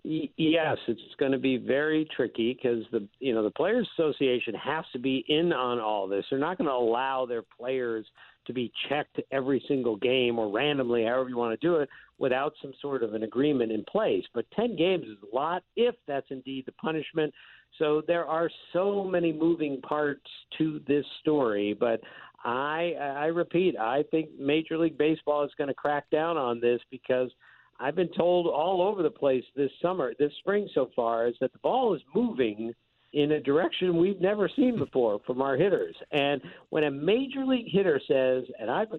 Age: 50-69